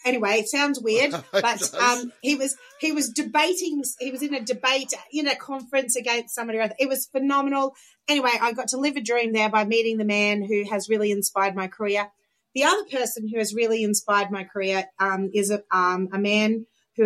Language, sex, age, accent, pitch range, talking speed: English, female, 30-49, Australian, 200-245 Hz, 210 wpm